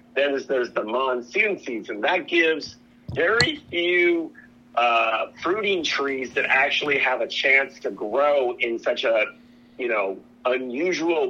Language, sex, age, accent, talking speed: English, male, 50-69, American, 135 wpm